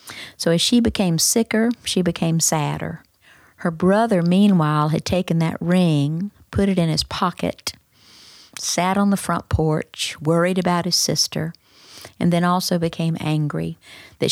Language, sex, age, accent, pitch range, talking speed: English, female, 50-69, American, 155-185 Hz, 145 wpm